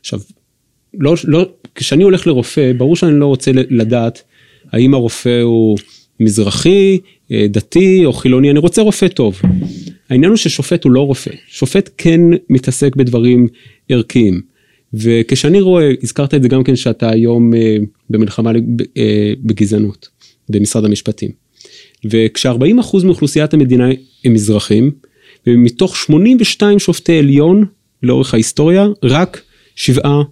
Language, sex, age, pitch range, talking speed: Hebrew, male, 30-49, 120-175 Hz, 120 wpm